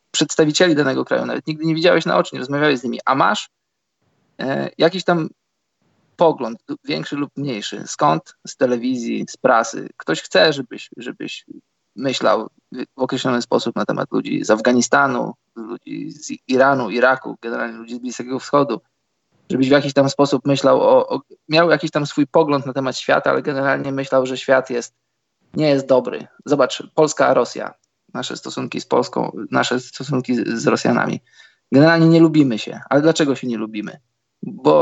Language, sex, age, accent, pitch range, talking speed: Polish, male, 20-39, native, 125-160 Hz, 165 wpm